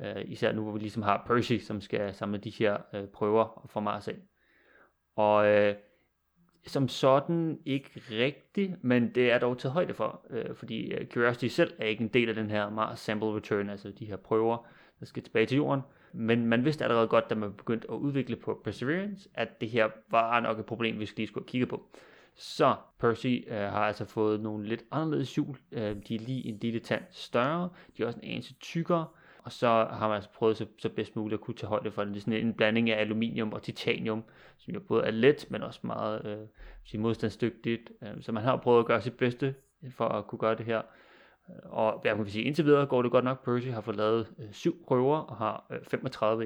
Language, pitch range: Danish, 110-125 Hz